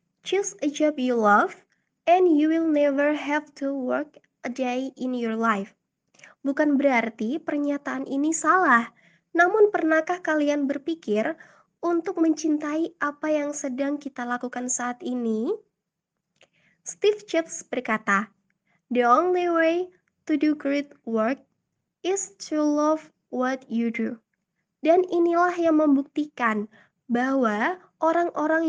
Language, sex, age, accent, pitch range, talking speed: Indonesian, female, 20-39, native, 245-320 Hz, 120 wpm